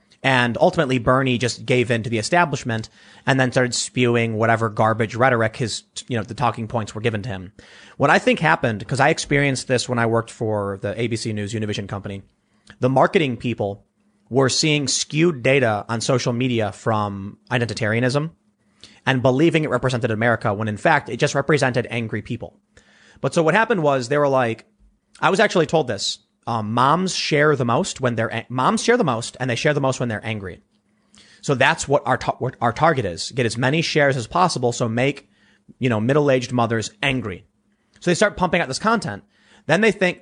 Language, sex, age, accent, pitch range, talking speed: English, male, 30-49, American, 115-145 Hz, 195 wpm